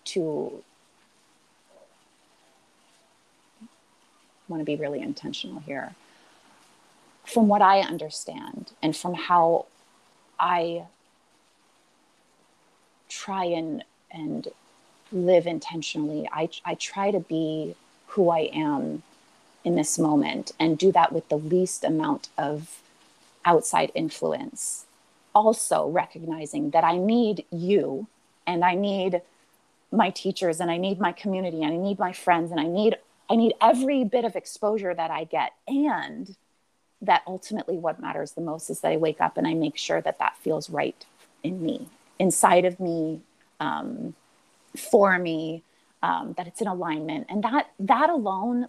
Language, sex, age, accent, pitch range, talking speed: English, female, 30-49, American, 165-225 Hz, 140 wpm